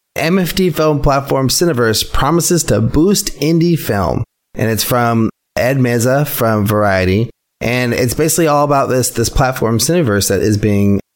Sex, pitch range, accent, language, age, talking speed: male, 110-140 Hz, American, English, 30-49, 150 wpm